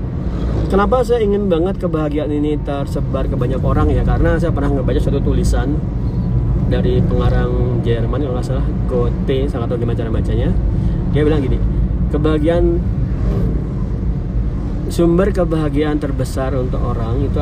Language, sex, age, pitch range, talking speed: Indonesian, male, 30-49, 120-155 Hz, 125 wpm